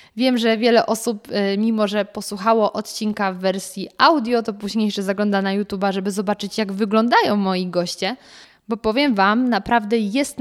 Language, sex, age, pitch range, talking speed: Polish, female, 20-39, 200-230 Hz, 160 wpm